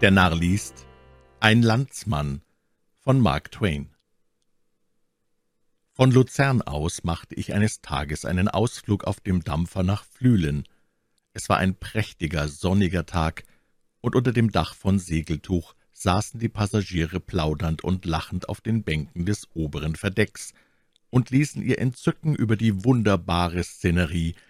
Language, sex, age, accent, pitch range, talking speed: German, male, 60-79, German, 80-110 Hz, 130 wpm